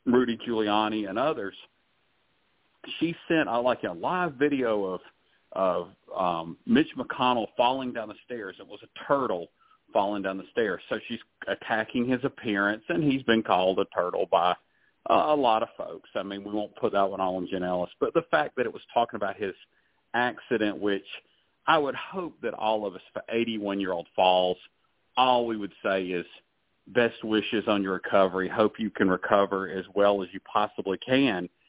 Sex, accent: male, American